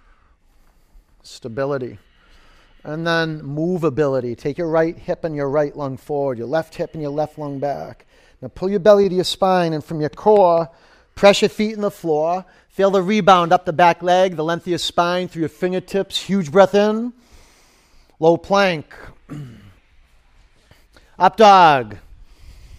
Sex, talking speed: male, 160 wpm